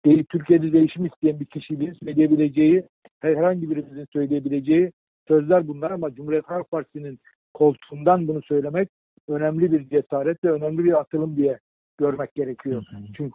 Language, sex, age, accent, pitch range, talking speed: Turkish, male, 60-79, native, 145-175 Hz, 130 wpm